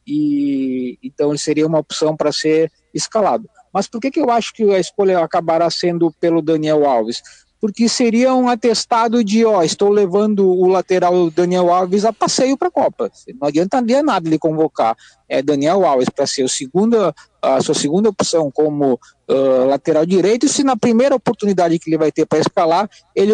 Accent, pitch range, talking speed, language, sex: Brazilian, 155-225 Hz, 185 wpm, Portuguese, male